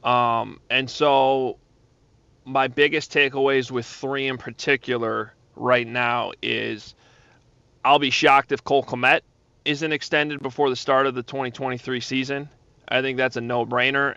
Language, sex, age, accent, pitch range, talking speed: English, male, 30-49, American, 125-150 Hz, 145 wpm